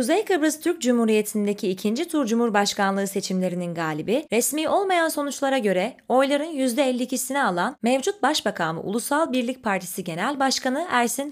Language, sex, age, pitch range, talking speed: Turkish, female, 20-39, 200-285 Hz, 135 wpm